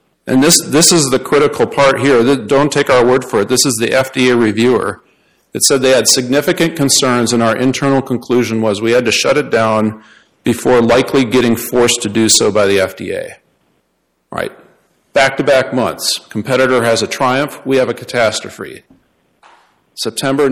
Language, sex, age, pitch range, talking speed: English, male, 40-59, 115-135 Hz, 175 wpm